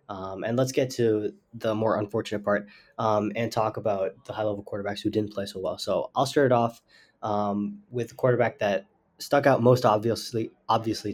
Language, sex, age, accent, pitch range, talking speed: English, male, 20-39, American, 100-120 Hz, 195 wpm